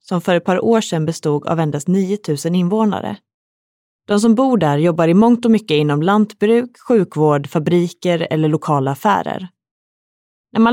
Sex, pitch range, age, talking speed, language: female, 160-210 Hz, 30-49, 160 wpm, Swedish